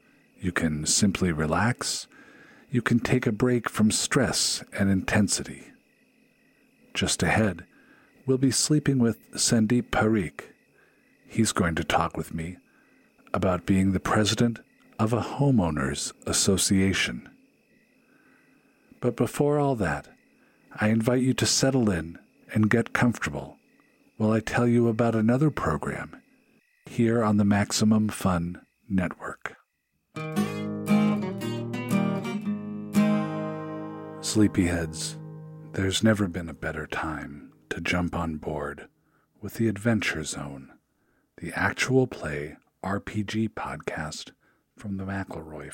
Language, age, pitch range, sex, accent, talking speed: English, 50-69, 95-130 Hz, male, American, 110 wpm